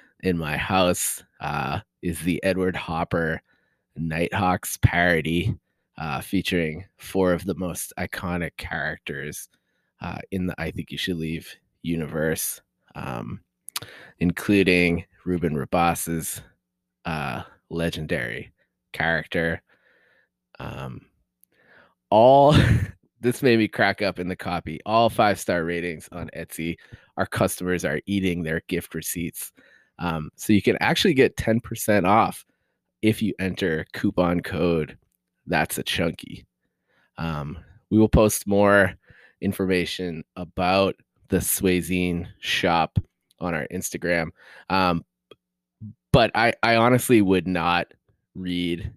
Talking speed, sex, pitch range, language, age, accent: 115 wpm, male, 85-95 Hz, English, 20-39, American